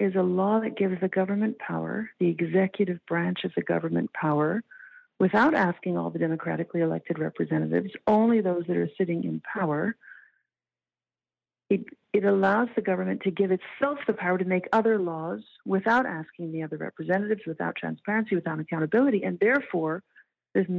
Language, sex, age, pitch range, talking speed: English, female, 50-69, 175-225 Hz, 160 wpm